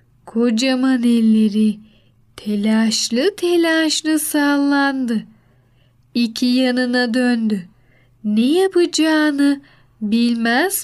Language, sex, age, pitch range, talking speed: Turkish, female, 10-29, 215-280 Hz, 60 wpm